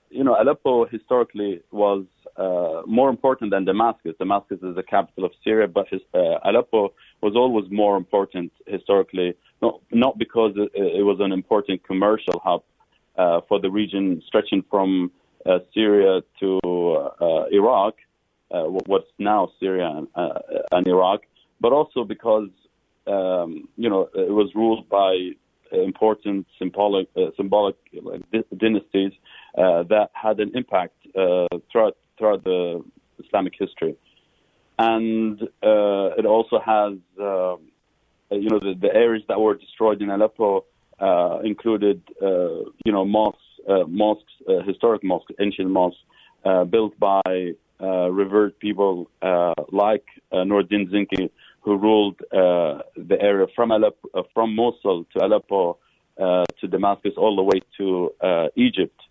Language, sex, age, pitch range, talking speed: English, male, 30-49, 95-110 Hz, 140 wpm